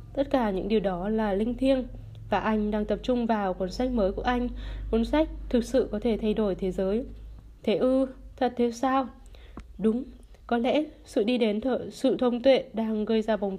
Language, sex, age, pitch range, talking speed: Vietnamese, female, 20-39, 205-250 Hz, 210 wpm